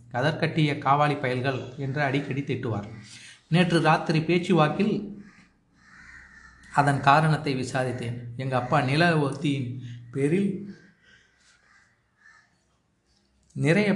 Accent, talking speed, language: native, 75 wpm, Tamil